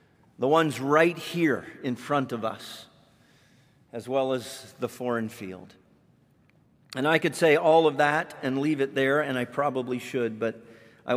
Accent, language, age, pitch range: American, English, 50-69, 120-145 Hz